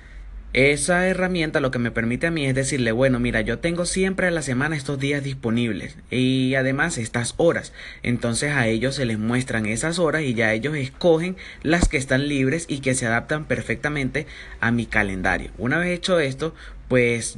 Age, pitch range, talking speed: 30-49, 115-140 Hz, 185 wpm